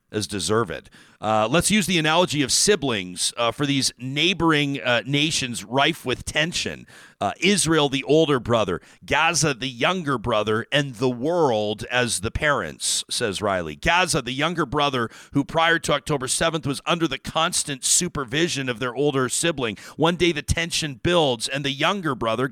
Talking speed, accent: 170 wpm, American